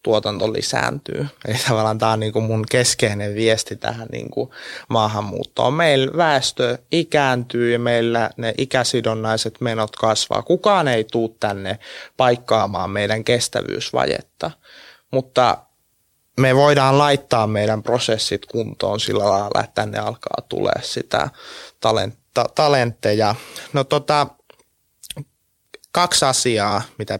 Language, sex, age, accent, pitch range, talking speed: Finnish, male, 20-39, native, 110-145 Hz, 115 wpm